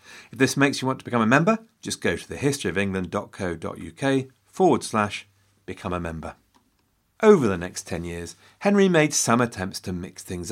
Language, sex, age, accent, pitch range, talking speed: English, male, 40-59, British, 90-125 Hz, 170 wpm